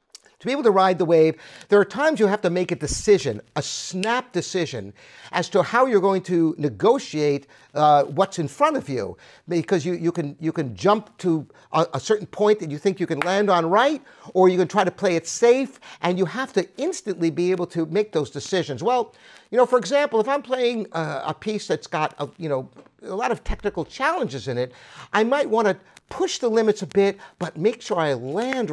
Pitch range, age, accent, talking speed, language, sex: 165-225 Hz, 50-69, American, 220 wpm, English, male